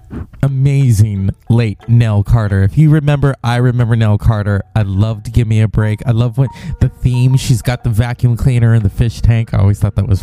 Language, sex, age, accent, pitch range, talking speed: English, male, 20-39, American, 105-125 Hz, 210 wpm